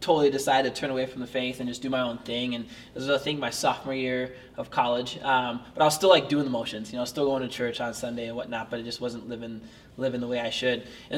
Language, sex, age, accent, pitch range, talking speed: English, male, 20-39, American, 125-140 Hz, 305 wpm